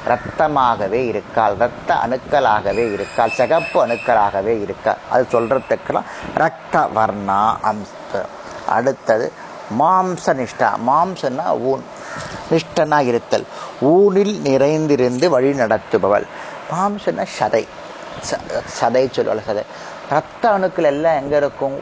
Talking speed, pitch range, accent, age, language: 75 wpm, 115-160 Hz, native, 30-49, Tamil